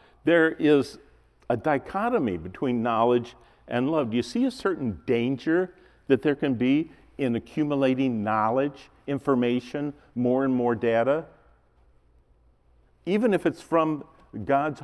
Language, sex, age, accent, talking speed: English, male, 50-69, American, 125 wpm